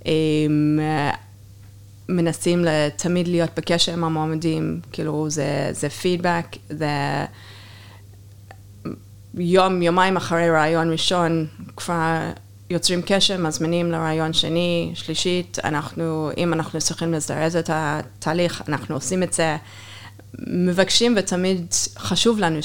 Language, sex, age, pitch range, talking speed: Hebrew, female, 20-39, 140-180 Hz, 100 wpm